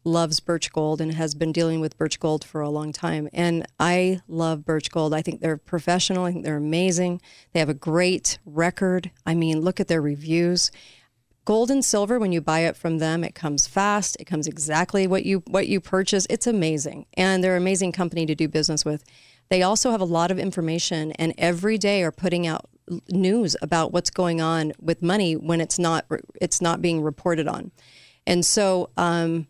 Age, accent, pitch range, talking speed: 40-59, American, 160-185 Hz, 205 wpm